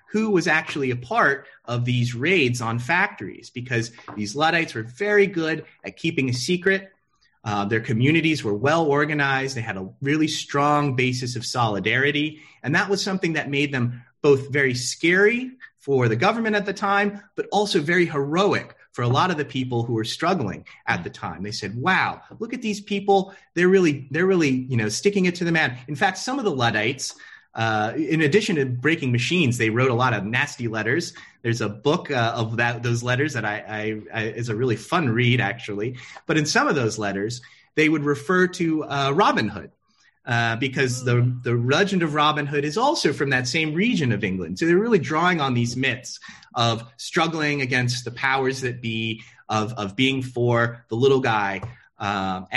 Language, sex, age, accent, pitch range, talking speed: English, male, 30-49, American, 120-165 Hz, 195 wpm